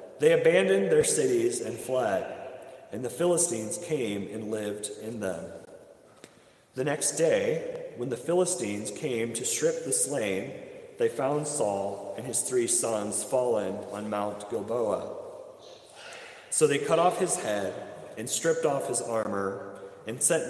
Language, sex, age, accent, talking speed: English, male, 40-59, American, 145 wpm